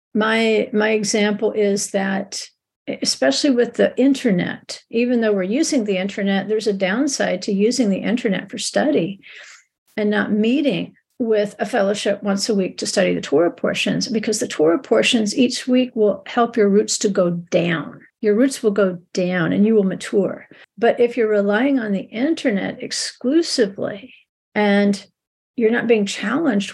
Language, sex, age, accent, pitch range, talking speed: English, female, 50-69, American, 200-240 Hz, 165 wpm